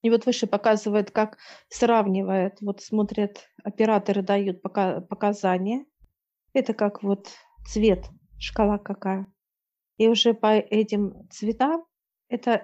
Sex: female